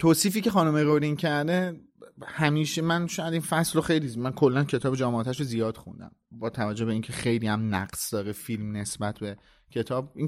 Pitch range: 115-145 Hz